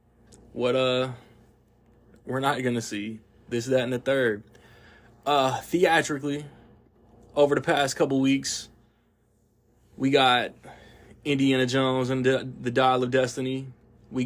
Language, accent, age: English, American, 20-39